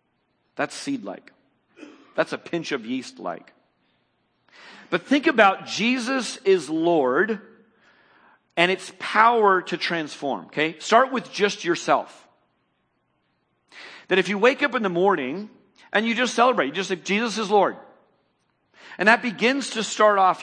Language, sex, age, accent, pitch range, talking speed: English, male, 40-59, American, 155-225 Hz, 145 wpm